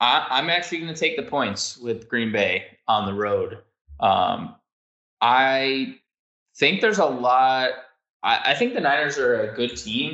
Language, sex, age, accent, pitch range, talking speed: English, male, 20-39, American, 105-135 Hz, 165 wpm